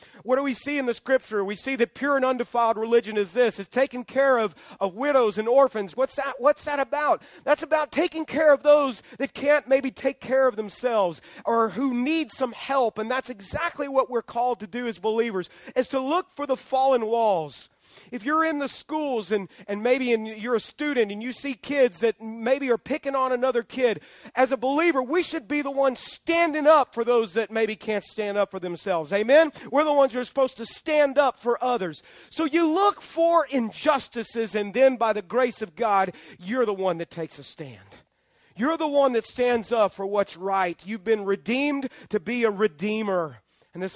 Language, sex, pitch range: English, male, 195-265 Hz